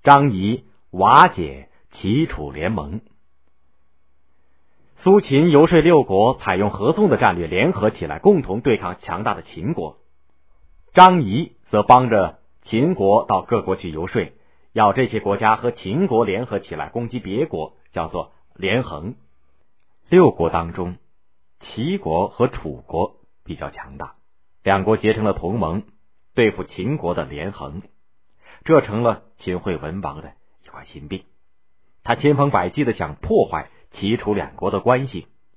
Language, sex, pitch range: Chinese, male, 75-110 Hz